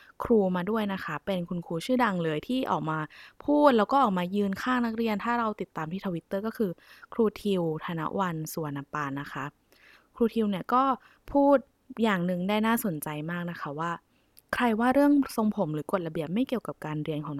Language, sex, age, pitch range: Thai, female, 20-39, 165-225 Hz